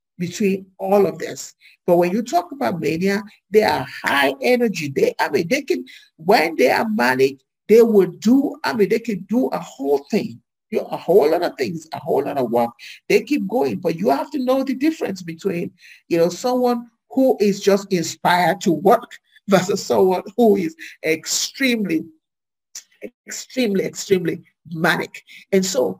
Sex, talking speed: male, 175 wpm